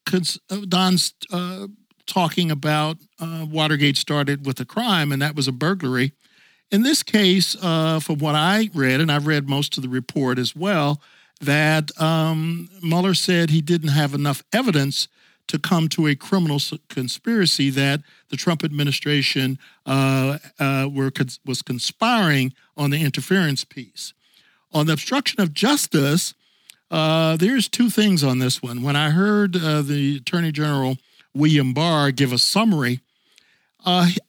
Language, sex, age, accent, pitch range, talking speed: English, male, 50-69, American, 140-180 Hz, 145 wpm